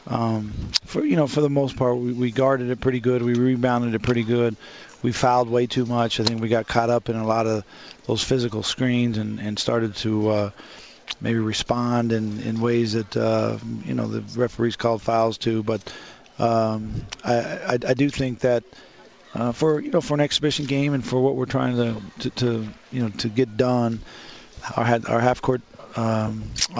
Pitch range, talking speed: 110-125 Hz, 200 wpm